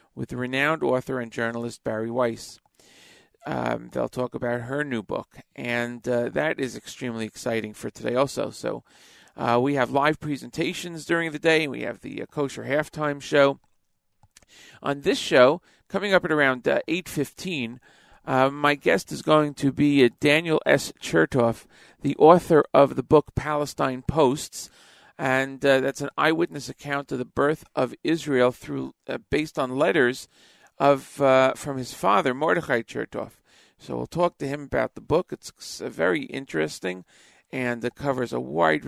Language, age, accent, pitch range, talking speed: English, 40-59, American, 120-145 Hz, 165 wpm